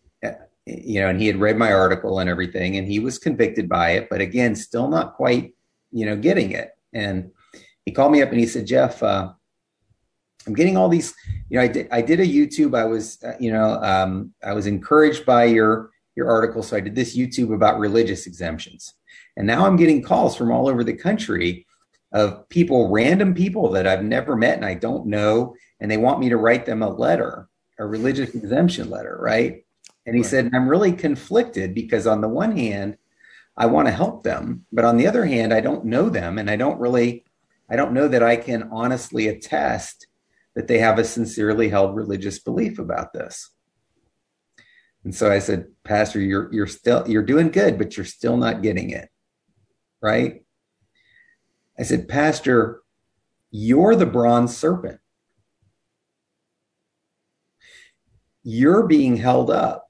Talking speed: 180 wpm